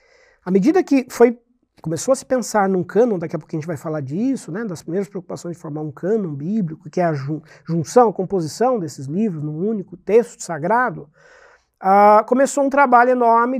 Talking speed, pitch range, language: 185 wpm, 185-260 Hz, Portuguese